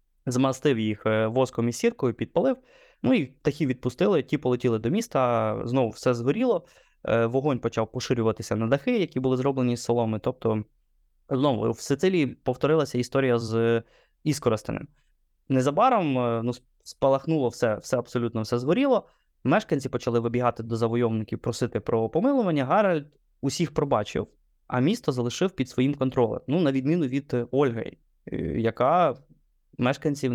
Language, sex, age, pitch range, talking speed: Ukrainian, male, 20-39, 120-145 Hz, 130 wpm